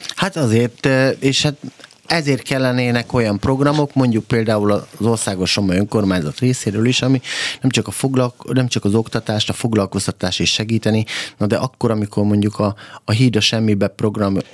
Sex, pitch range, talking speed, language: male, 100-130 Hz, 165 wpm, Hungarian